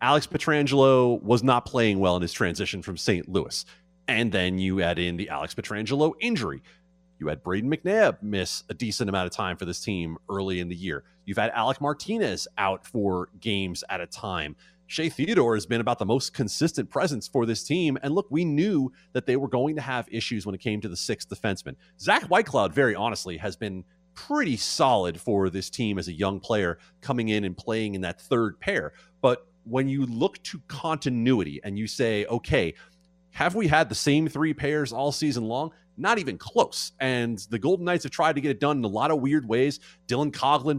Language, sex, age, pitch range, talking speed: English, male, 30-49, 95-150 Hz, 210 wpm